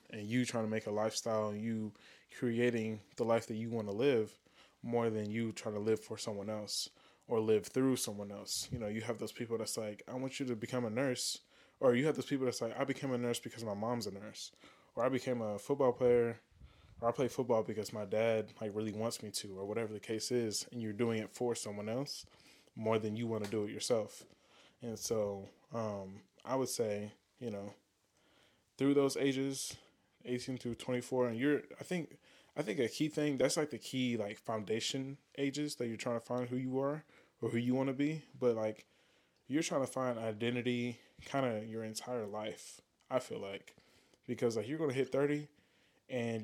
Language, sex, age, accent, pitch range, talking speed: English, male, 20-39, American, 110-125 Hz, 215 wpm